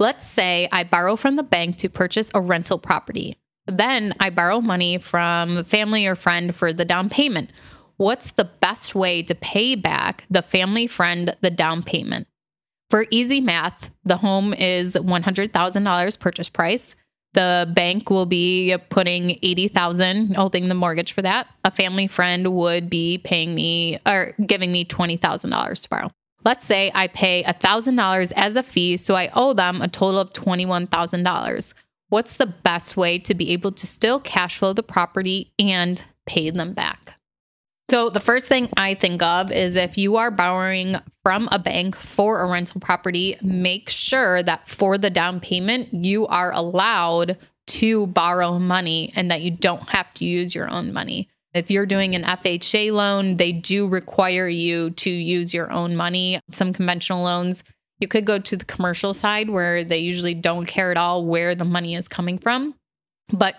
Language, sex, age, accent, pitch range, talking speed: English, female, 20-39, American, 175-200 Hz, 180 wpm